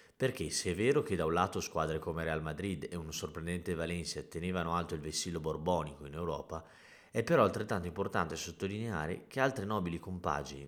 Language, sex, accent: Italian, male, native